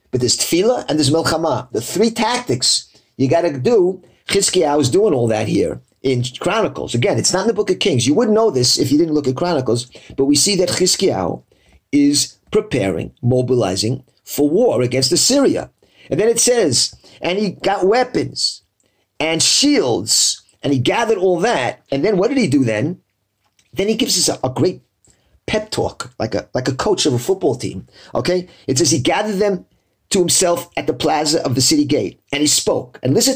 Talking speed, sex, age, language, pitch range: 200 wpm, male, 50-69, English, 125-200 Hz